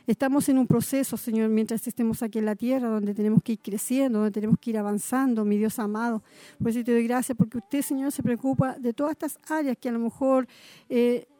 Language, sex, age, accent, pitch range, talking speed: Spanish, female, 40-59, American, 225-260 Hz, 220 wpm